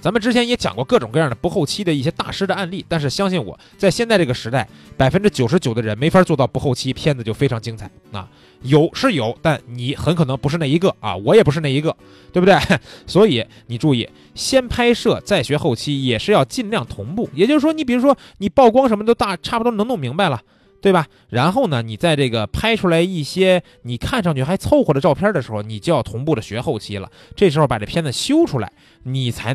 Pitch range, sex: 125-205 Hz, male